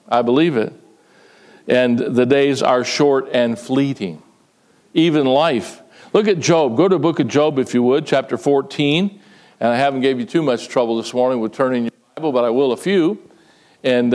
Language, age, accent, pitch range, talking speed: English, 50-69, American, 130-180 Hz, 195 wpm